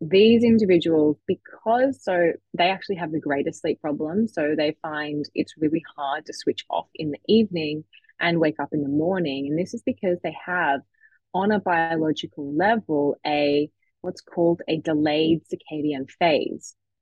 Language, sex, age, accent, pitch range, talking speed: English, female, 20-39, Australian, 150-190 Hz, 160 wpm